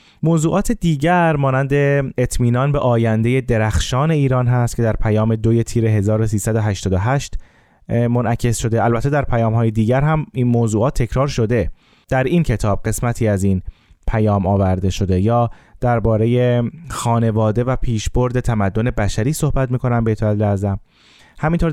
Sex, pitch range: male, 105-130 Hz